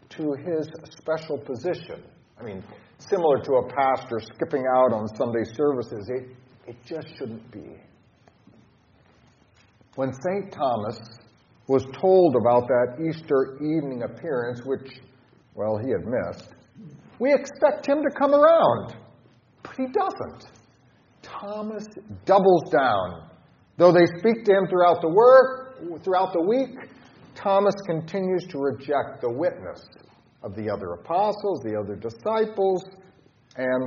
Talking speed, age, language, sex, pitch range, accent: 130 wpm, 50-69, English, male, 120-180 Hz, American